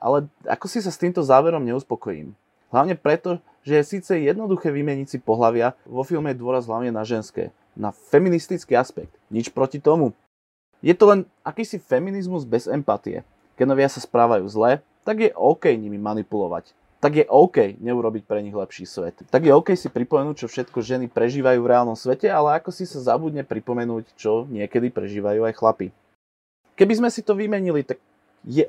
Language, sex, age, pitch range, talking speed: Slovak, male, 20-39, 115-170 Hz, 175 wpm